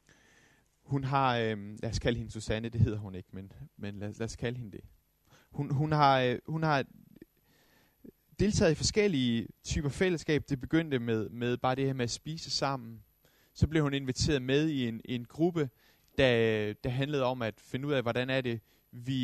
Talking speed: 200 wpm